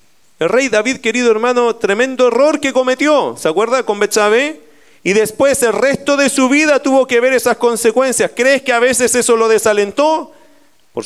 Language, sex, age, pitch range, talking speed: Spanish, male, 40-59, 195-275 Hz, 180 wpm